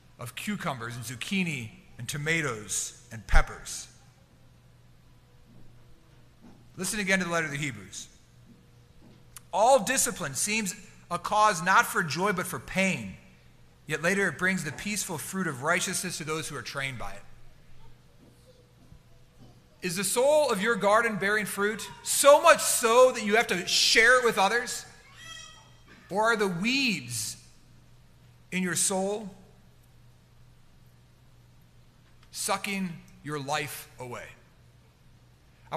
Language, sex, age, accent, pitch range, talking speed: English, male, 40-59, American, 135-200 Hz, 125 wpm